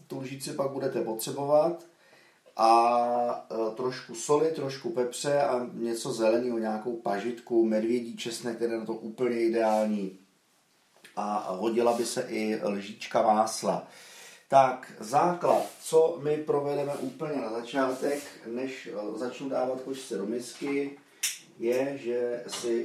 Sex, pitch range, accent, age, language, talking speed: male, 115-135 Hz, native, 40-59, Czech, 125 wpm